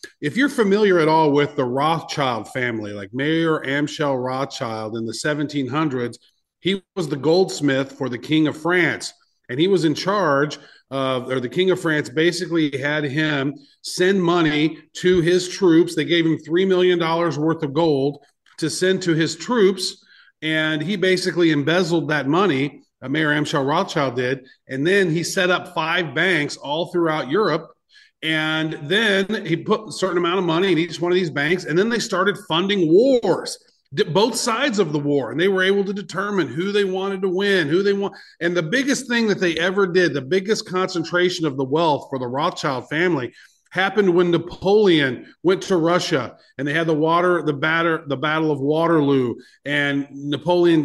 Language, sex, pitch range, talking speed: English, male, 145-185 Hz, 180 wpm